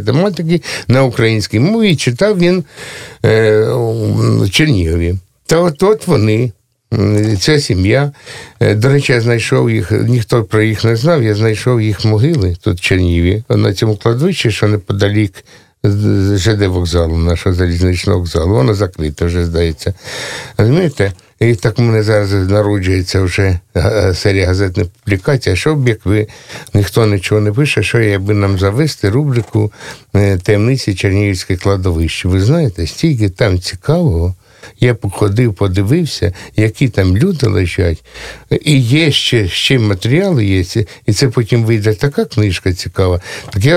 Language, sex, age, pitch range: Russian, male, 60-79, 100-125 Hz